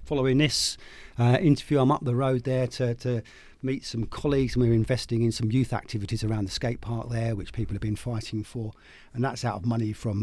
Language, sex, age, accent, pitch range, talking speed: English, male, 40-59, British, 115-140 Hz, 225 wpm